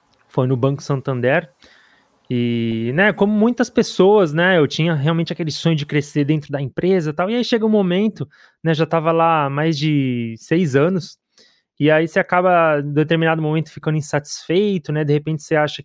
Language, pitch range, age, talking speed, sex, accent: Portuguese, 135-175 Hz, 20-39, 185 wpm, male, Brazilian